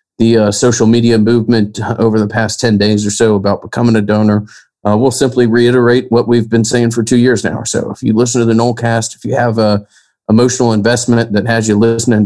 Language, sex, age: English, male, 40-59